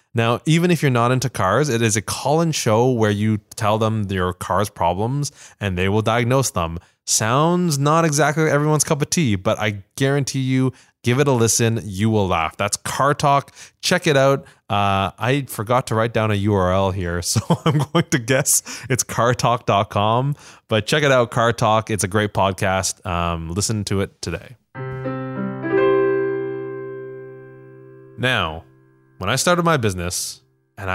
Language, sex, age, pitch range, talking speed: English, male, 20-39, 95-130 Hz, 170 wpm